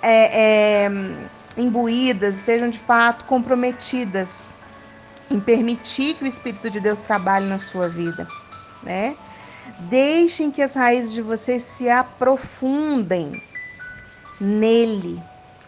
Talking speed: 105 wpm